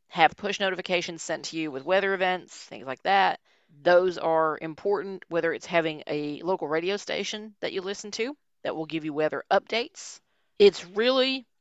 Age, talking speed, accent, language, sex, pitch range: 40-59, 175 wpm, American, English, female, 160-205 Hz